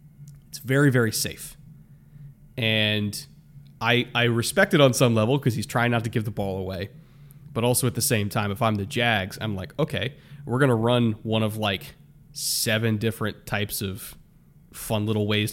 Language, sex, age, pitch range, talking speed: English, male, 20-39, 105-140 Hz, 185 wpm